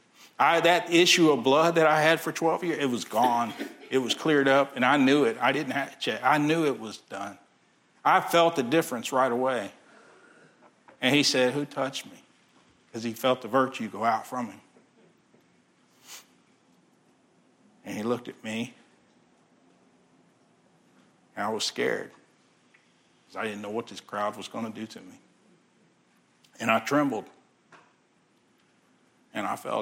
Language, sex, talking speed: English, male, 160 wpm